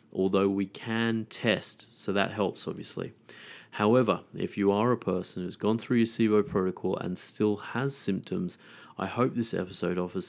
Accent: Australian